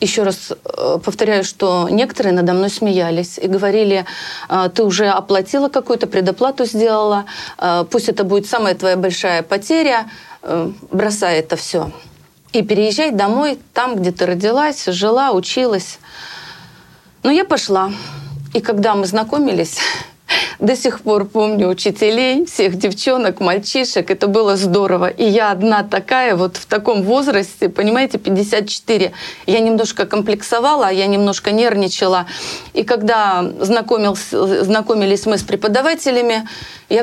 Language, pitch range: Russian, 195-255 Hz